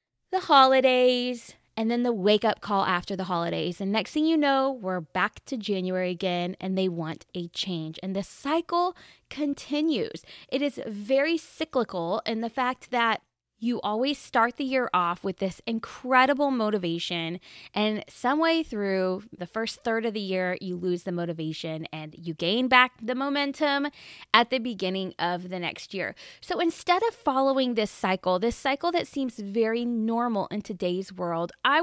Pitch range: 190-270 Hz